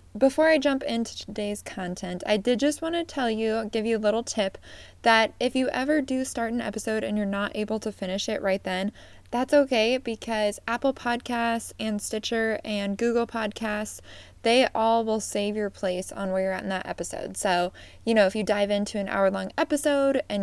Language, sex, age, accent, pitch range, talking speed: English, female, 20-39, American, 205-250 Hz, 205 wpm